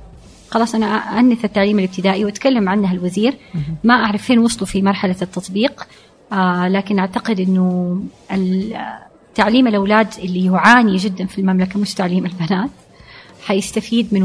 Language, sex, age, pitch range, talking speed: Arabic, female, 30-49, 185-220 Hz, 125 wpm